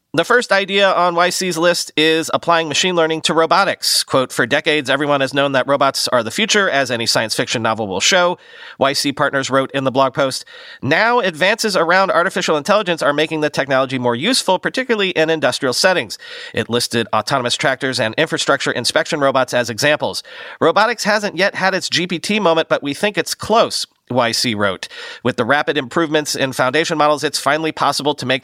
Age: 40-59